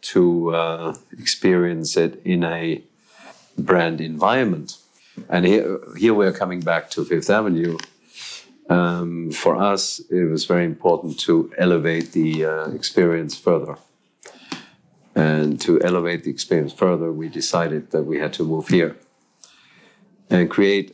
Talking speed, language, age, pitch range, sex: 135 wpm, English, 50-69, 80-90 Hz, male